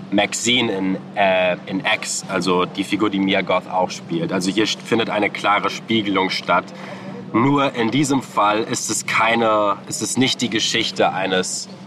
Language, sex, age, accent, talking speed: German, male, 20-39, German, 165 wpm